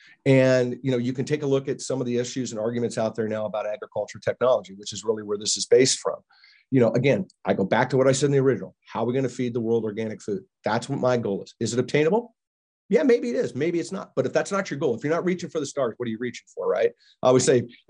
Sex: male